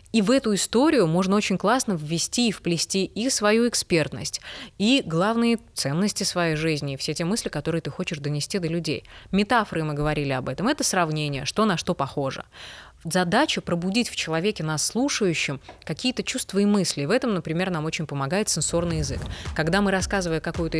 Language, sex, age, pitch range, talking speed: Russian, female, 20-39, 165-225 Hz, 175 wpm